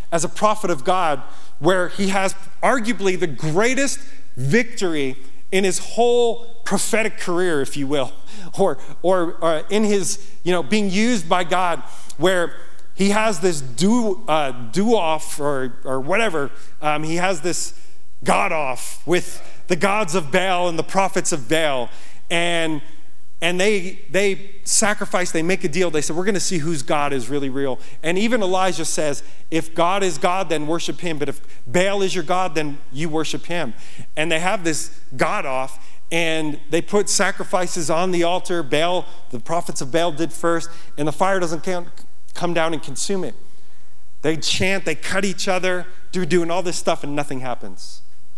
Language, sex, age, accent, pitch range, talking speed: English, male, 30-49, American, 145-190 Hz, 170 wpm